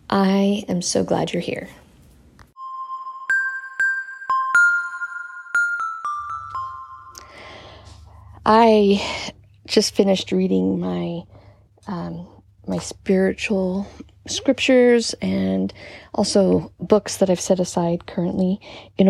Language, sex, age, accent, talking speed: English, female, 40-59, American, 75 wpm